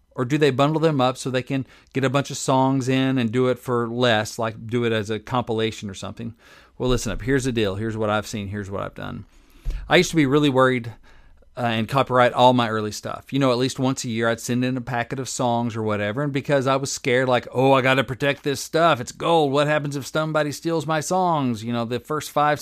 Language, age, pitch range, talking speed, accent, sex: English, 40-59, 110-135 Hz, 260 wpm, American, male